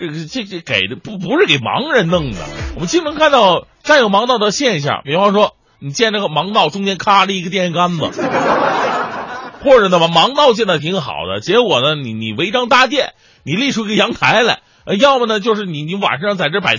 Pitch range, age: 175-250 Hz, 30-49